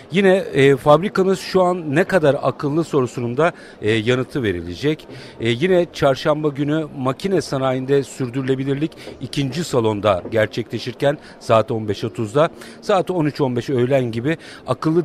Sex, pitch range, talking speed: male, 120-155 Hz, 120 wpm